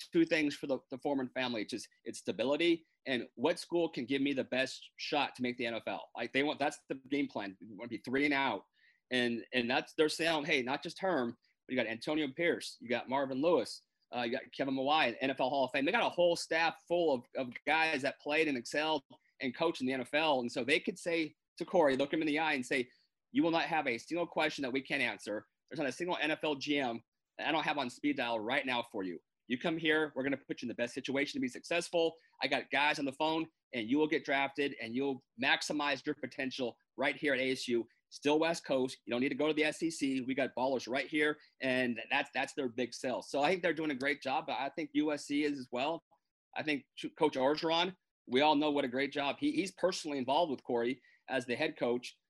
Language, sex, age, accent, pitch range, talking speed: English, male, 30-49, American, 130-165 Hz, 250 wpm